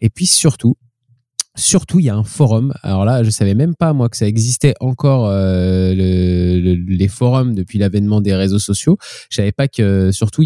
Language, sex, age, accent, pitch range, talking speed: French, male, 20-39, French, 100-135 Hz, 210 wpm